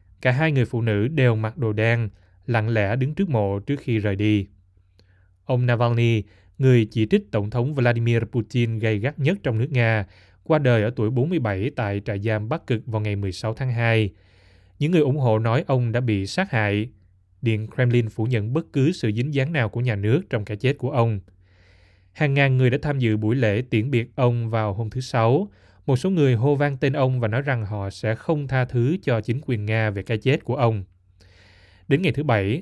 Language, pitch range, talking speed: Vietnamese, 105-130 Hz, 220 wpm